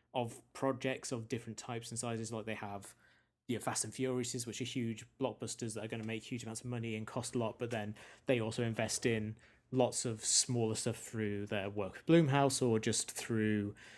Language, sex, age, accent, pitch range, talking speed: English, male, 20-39, British, 110-130 Hz, 220 wpm